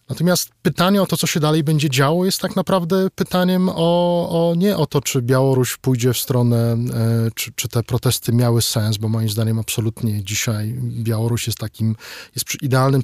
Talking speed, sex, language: 185 wpm, male, Polish